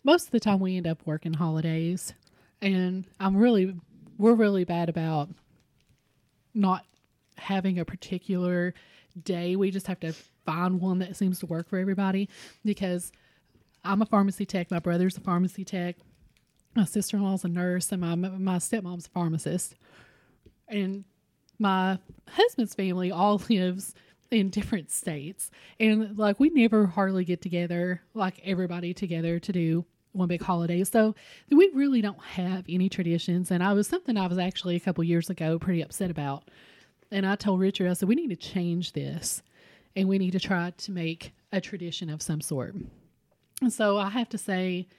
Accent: American